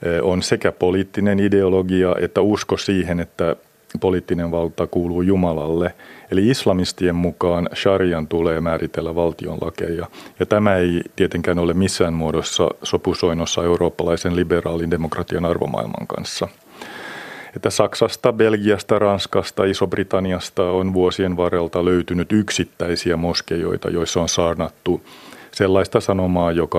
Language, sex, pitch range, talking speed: Finnish, male, 85-95 Hz, 110 wpm